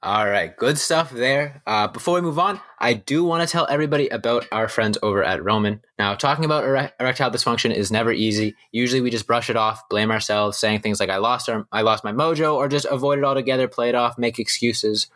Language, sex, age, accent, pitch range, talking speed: English, male, 20-39, American, 110-130 Hz, 230 wpm